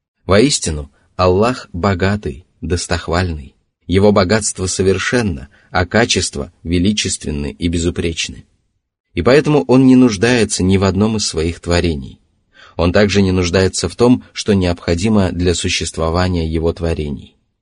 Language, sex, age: Russian, male, 30-49